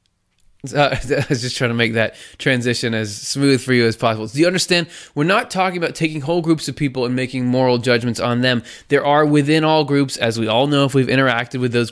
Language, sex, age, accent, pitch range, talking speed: English, male, 20-39, American, 115-140 Hz, 235 wpm